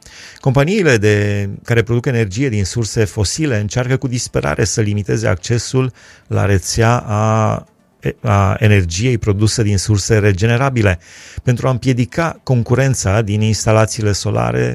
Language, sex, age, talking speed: Romanian, male, 30-49, 120 wpm